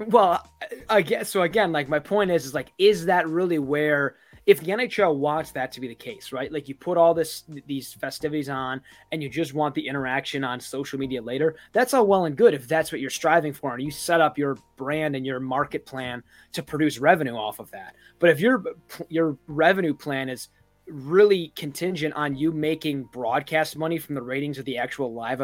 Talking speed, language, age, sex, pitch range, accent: 215 wpm, English, 20-39, male, 135-165 Hz, American